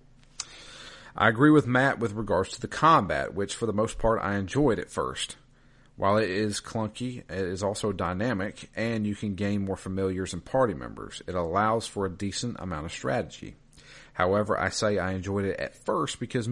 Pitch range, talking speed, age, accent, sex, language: 95-115 Hz, 190 wpm, 40-59, American, male, English